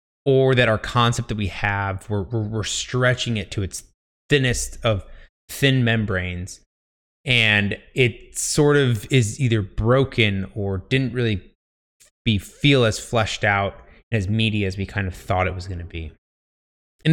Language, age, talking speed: English, 20-39, 160 wpm